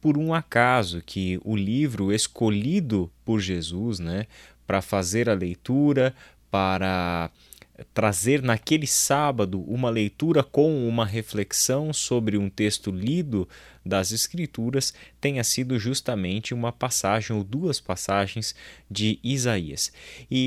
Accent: Brazilian